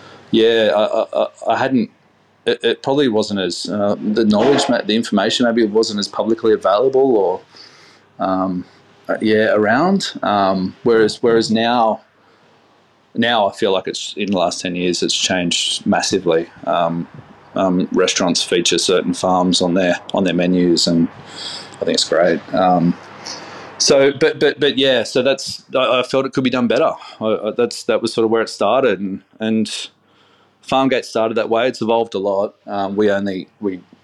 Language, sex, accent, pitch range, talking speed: English, male, Australian, 95-115 Hz, 170 wpm